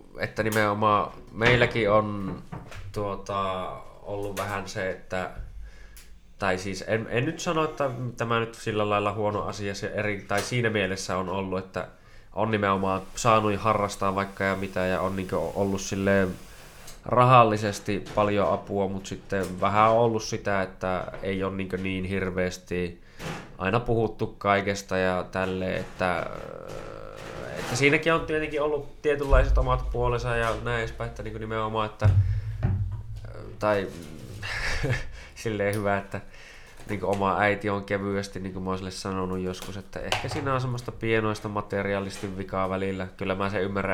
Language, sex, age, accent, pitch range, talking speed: Finnish, male, 20-39, native, 95-110 Hz, 135 wpm